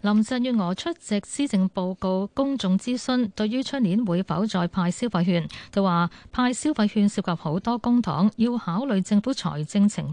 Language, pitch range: Chinese, 175-235 Hz